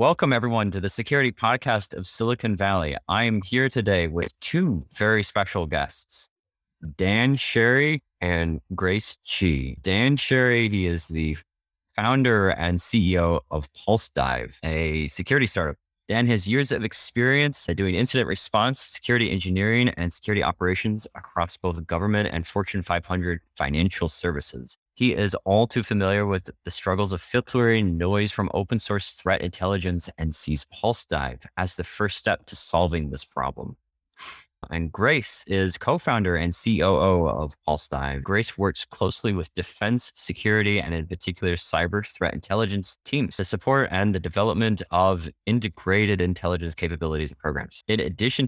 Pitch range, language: 85-110 Hz, English